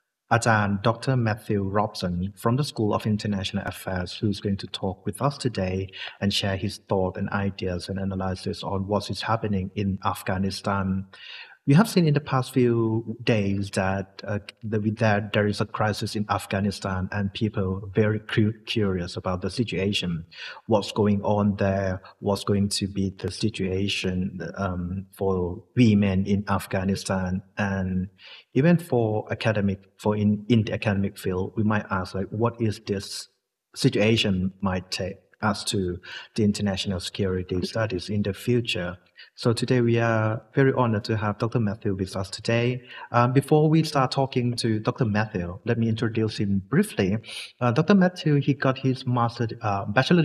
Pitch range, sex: 95-115 Hz, male